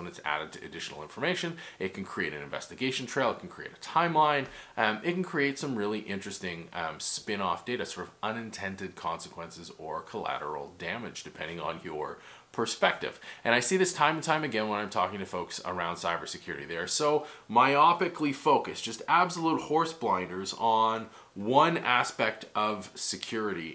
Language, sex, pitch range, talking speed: English, male, 110-155 Hz, 165 wpm